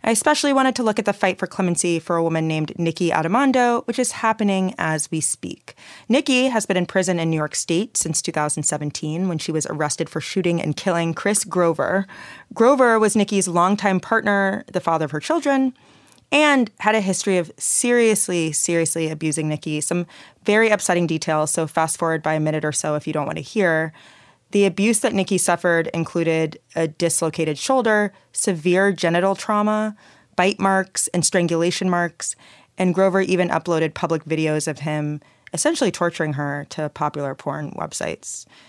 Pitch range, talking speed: 160-205 Hz, 175 wpm